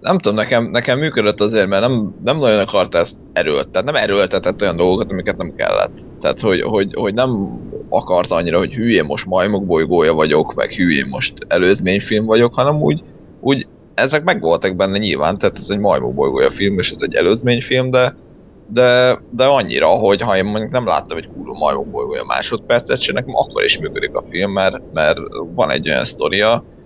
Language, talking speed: Hungarian, 185 wpm